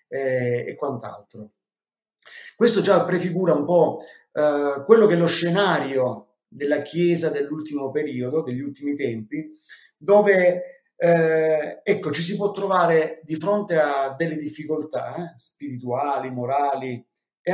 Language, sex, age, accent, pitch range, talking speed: Italian, male, 30-49, native, 135-185 Hz, 125 wpm